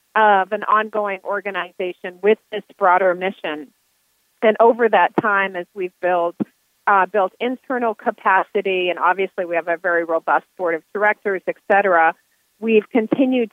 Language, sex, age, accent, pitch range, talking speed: English, female, 40-59, American, 180-210 Hz, 145 wpm